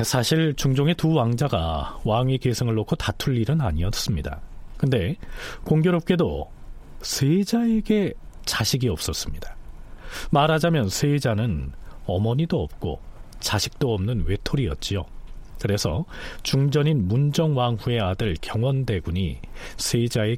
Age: 40-59